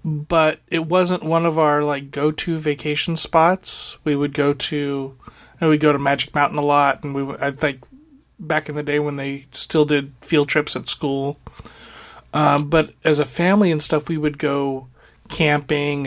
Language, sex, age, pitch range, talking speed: English, male, 30-49, 135-155 Hz, 200 wpm